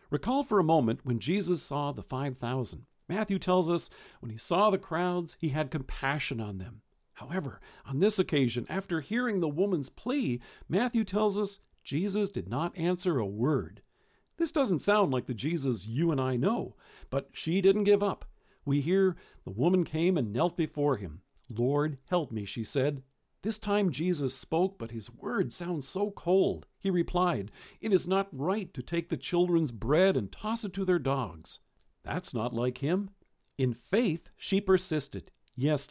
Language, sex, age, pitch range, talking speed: English, male, 50-69, 130-190 Hz, 175 wpm